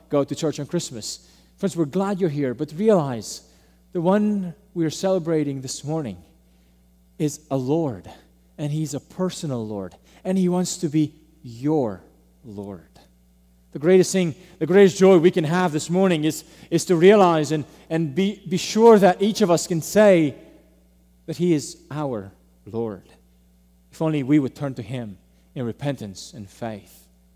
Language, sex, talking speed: English, male, 165 wpm